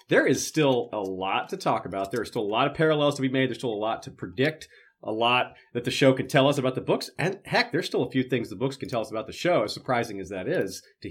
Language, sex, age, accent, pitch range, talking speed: English, male, 30-49, American, 125-155 Hz, 305 wpm